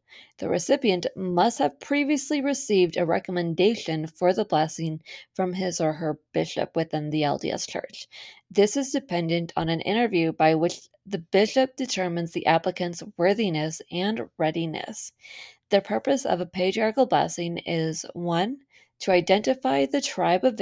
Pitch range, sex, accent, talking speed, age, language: 170-220 Hz, female, American, 145 wpm, 20-39, English